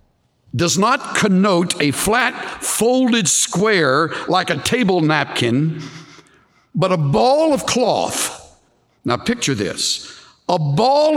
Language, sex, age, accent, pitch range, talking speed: English, male, 60-79, American, 180-240 Hz, 115 wpm